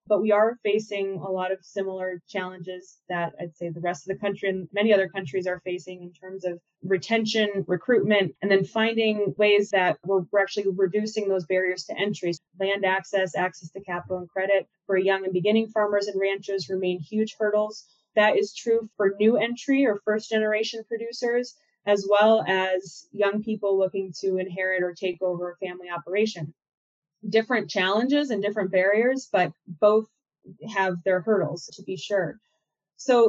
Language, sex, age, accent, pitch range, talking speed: English, female, 20-39, American, 185-215 Hz, 170 wpm